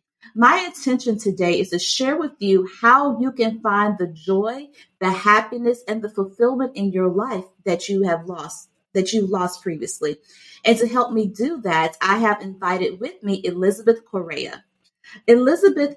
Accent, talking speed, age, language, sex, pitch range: American, 165 wpm, 30-49, English, female, 190-250 Hz